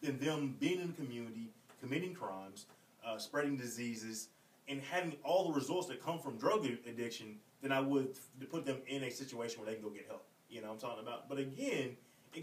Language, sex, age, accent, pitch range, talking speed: English, male, 30-49, American, 120-180 Hz, 215 wpm